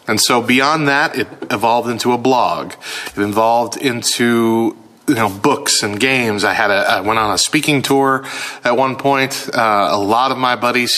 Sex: male